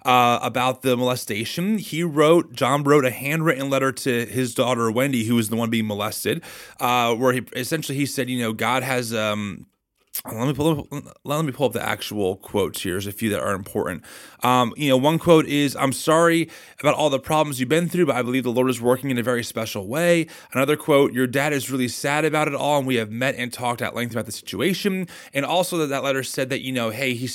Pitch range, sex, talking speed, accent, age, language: 120-150 Hz, male, 230 wpm, American, 30-49, English